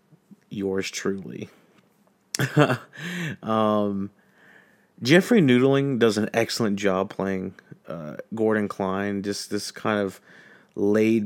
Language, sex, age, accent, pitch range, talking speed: English, male, 30-49, American, 100-125 Hz, 95 wpm